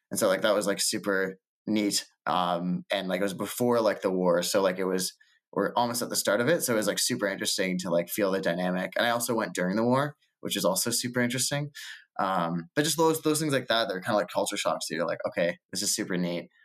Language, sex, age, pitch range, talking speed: English, male, 20-39, 90-115 Hz, 260 wpm